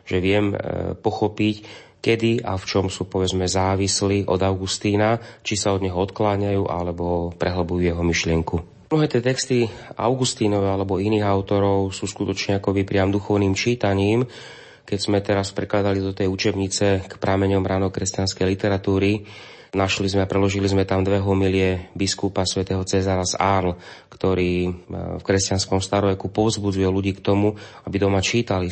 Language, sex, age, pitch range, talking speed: Slovak, male, 30-49, 95-105 Hz, 140 wpm